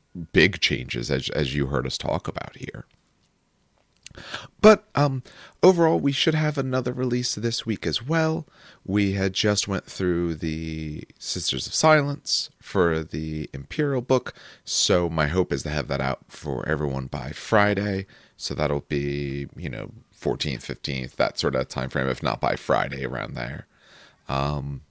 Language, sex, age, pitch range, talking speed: English, male, 30-49, 70-100 Hz, 160 wpm